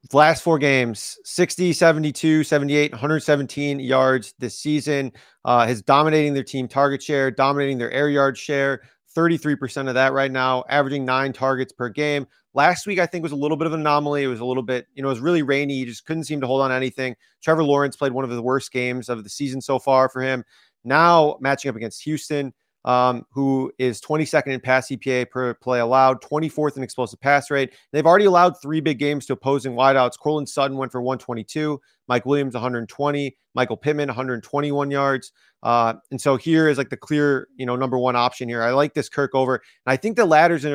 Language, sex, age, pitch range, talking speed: English, male, 30-49, 125-145 Hz, 210 wpm